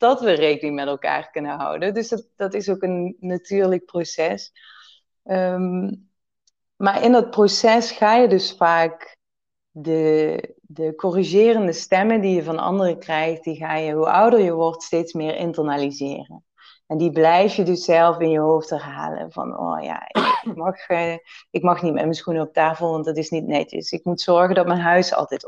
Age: 30-49